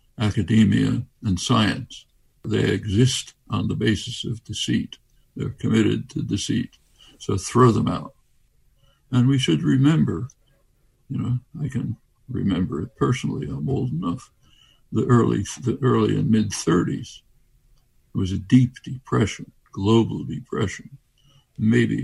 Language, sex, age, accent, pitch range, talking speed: English, male, 60-79, American, 110-135 Hz, 125 wpm